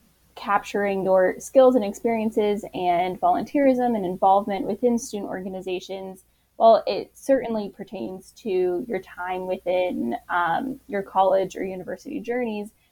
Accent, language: American, English